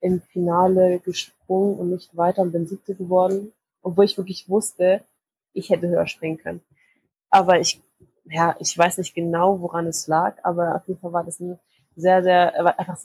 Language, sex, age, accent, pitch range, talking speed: German, female, 20-39, German, 170-195 Hz, 180 wpm